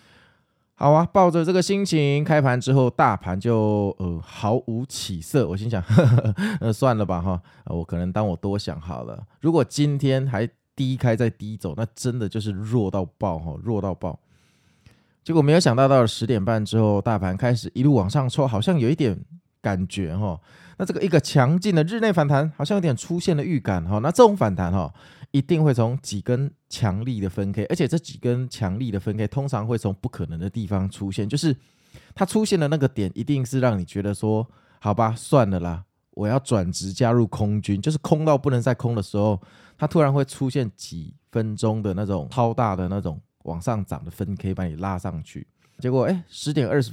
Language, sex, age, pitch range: Chinese, male, 20-39, 100-140 Hz